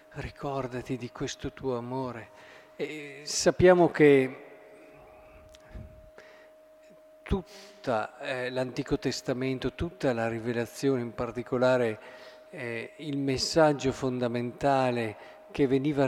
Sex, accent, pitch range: male, native, 130-160 Hz